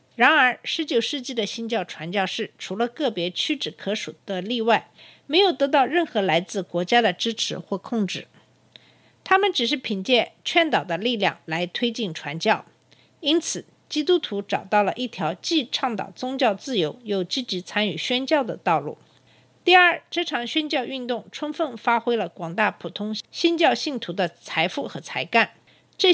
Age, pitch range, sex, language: 50-69, 195-280 Hz, female, Chinese